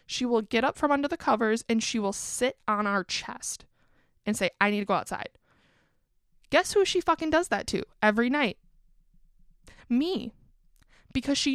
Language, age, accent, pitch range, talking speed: English, 20-39, American, 215-280 Hz, 175 wpm